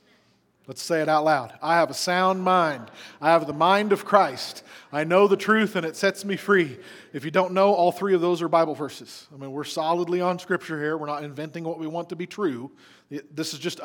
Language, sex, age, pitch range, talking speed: English, male, 40-59, 150-190 Hz, 240 wpm